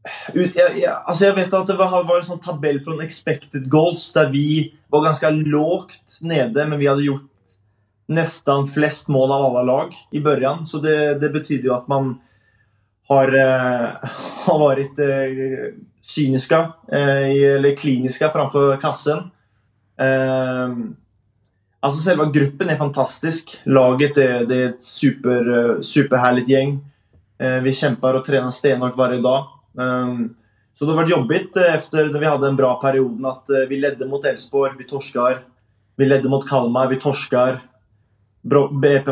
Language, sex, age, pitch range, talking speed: Swedish, male, 20-39, 125-150 Hz, 145 wpm